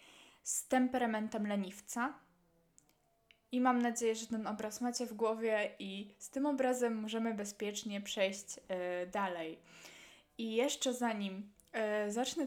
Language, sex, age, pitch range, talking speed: Polish, female, 20-39, 200-245 Hz, 115 wpm